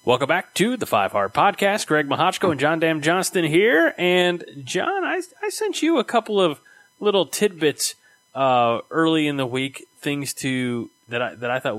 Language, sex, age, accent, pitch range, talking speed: English, male, 30-49, American, 120-155 Hz, 190 wpm